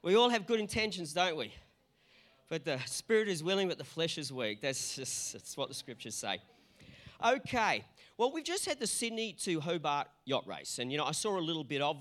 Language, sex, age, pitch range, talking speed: English, male, 40-59, 155-215 Hz, 215 wpm